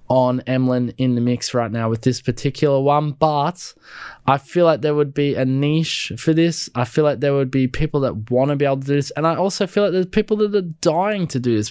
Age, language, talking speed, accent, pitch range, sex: 10-29, English, 255 wpm, Australian, 125-160 Hz, male